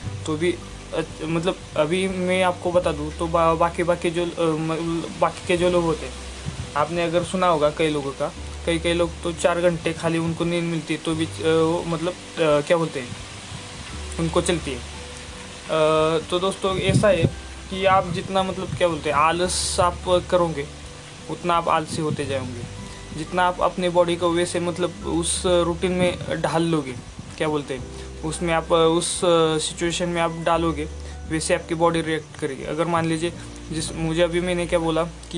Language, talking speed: Hindi, 175 wpm